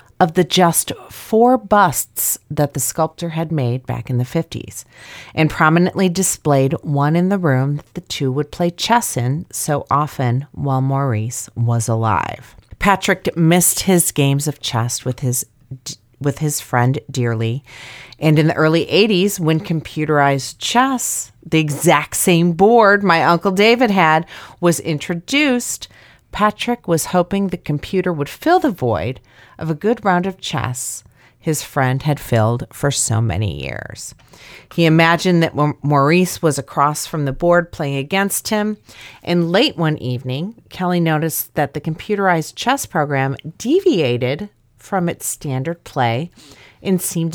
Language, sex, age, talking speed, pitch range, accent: English, female, 40-59, 145 wpm, 130-180 Hz, American